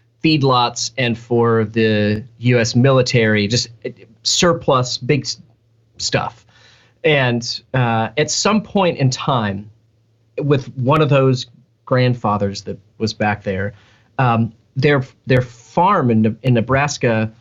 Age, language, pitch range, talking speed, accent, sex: 30-49, English, 115-140 Hz, 115 wpm, American, male